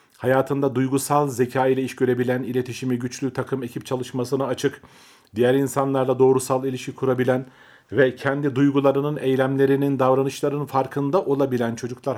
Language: Turkish